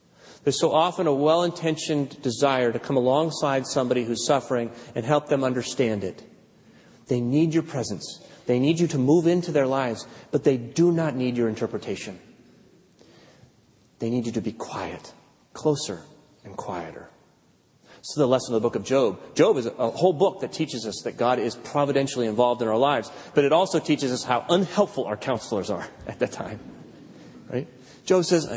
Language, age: English, 30-49